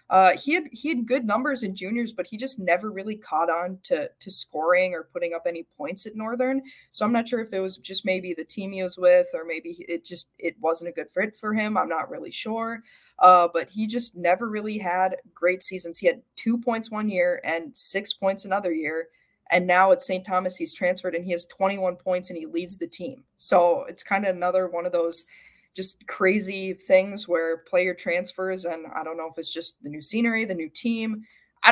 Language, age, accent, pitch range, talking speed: English, 20-39, American, 175-225 Hz, 225 wpm